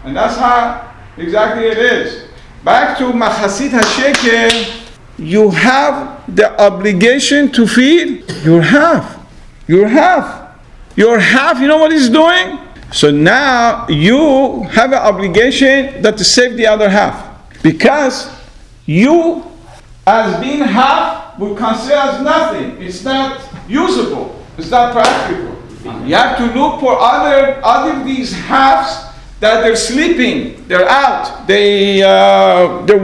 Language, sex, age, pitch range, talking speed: English, male, 50-69, 215-285 Hz, 130 wpm